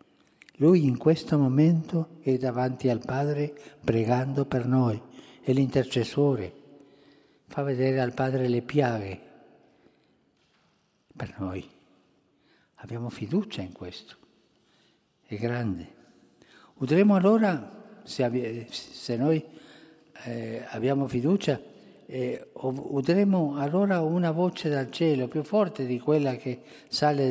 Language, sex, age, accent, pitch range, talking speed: Italian, male, 60-79, native, 120-155 Hz, 105 wpm